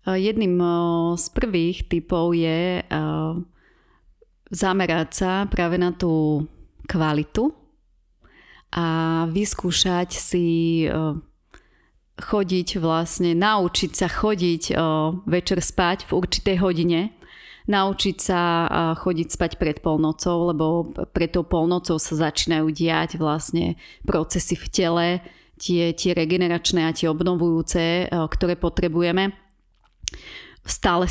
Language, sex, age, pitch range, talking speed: Slovak, female, 30-49, 165-185 Hz, 95 wpm